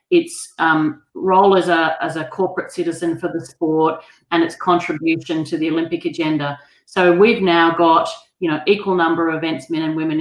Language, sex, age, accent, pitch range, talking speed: English, female, 40-59, Australian, 160-185 Hz, 190 wpm